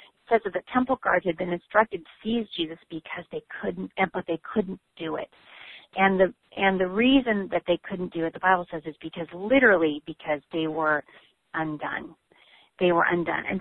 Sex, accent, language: female, American, English